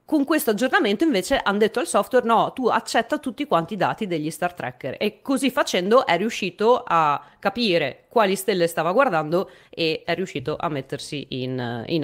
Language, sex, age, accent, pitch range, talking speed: Italian, female, 30-49, native, 160-225 Hz, 180 wpm